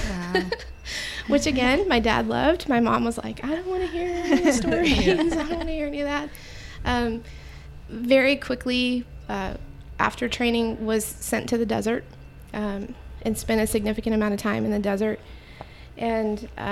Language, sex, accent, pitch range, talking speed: English, female, American, 215-235 Hz, 175 wpm